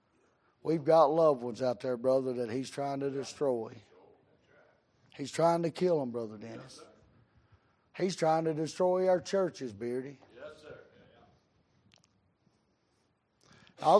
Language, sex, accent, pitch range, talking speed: English, male, American, 120-165 Hz, 115 wpm